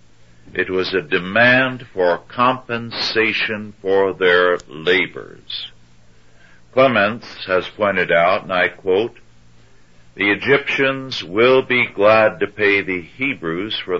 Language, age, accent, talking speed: English, 60-79, American, 110 wpm